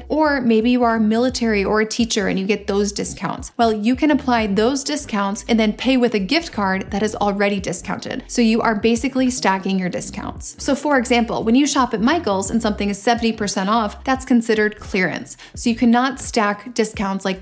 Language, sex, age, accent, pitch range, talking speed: English, female, 30-49, American, 205-245 Hz, 205 wpm